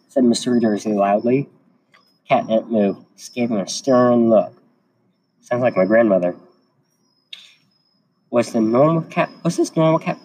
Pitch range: 110-150 Hz